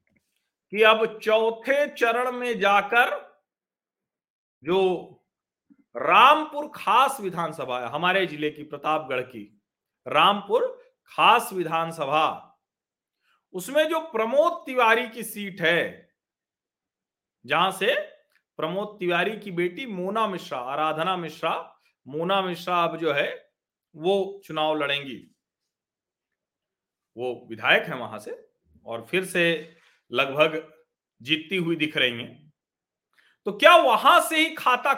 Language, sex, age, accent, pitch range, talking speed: Hindi, male, 50-69, native, 170-270 Hz, 110 wpm